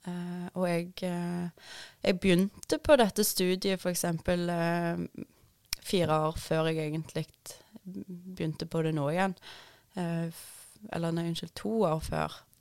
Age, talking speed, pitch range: 20-39, 120 wpm, 160-185 Hz